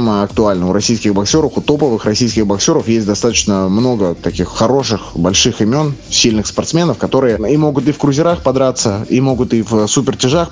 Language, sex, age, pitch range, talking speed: Russian, male, 20-39, 95-120 Hz, 165 wpm